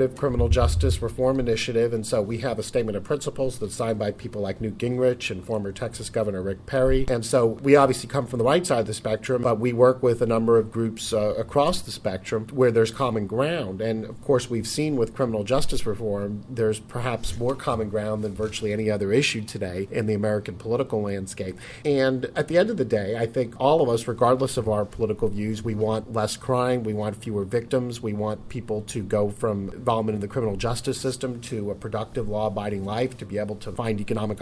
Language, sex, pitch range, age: English, male, 105-125 Hz, 40-59